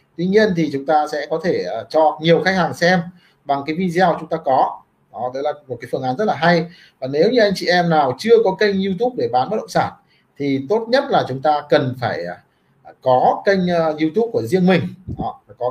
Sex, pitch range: male, 140-195 Hz